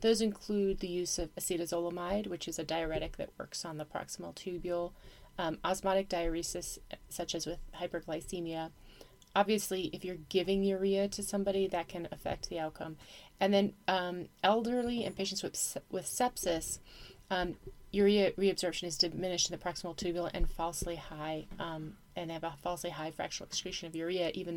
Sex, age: female, 30-49